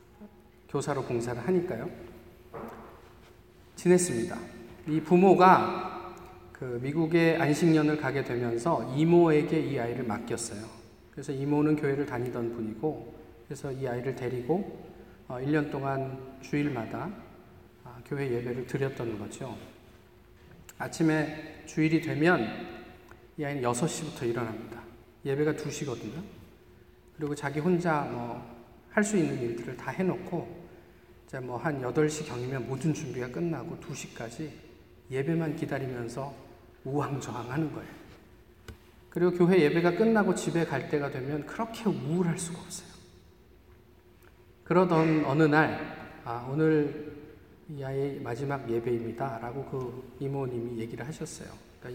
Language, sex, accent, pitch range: Korean, male, native, 120-160 Hz